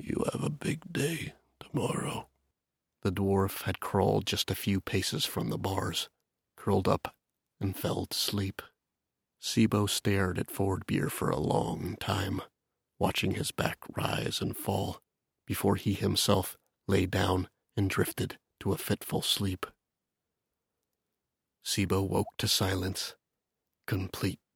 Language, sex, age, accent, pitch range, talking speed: English, male, 30-49, American, 95-100 Hz, 130 wpm